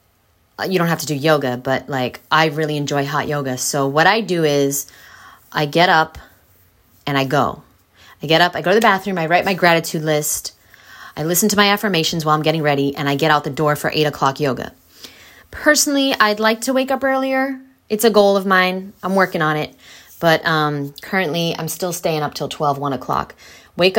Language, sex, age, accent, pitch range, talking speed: English, female, 20-39, American, 145-185 Hz, 210 wpm